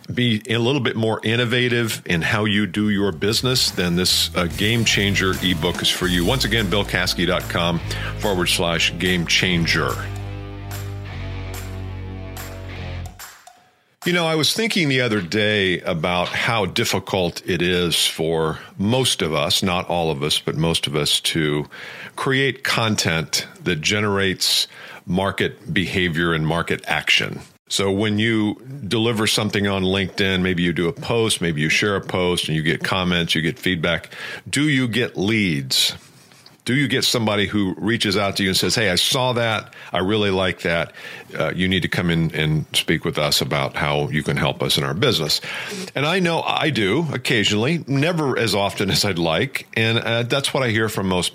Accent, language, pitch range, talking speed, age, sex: American, English, 90-120 Hz, 175 wpm, 50-69, male